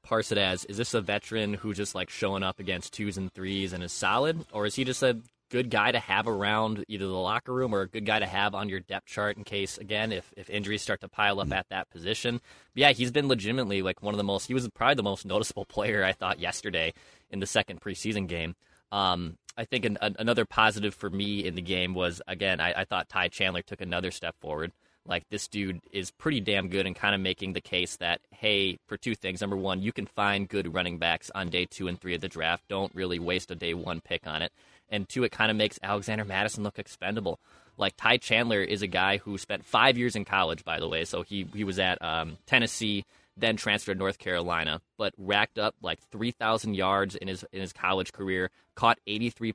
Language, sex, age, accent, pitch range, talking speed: English, male, 20-39, American, 95-110 Hz, 240 wpm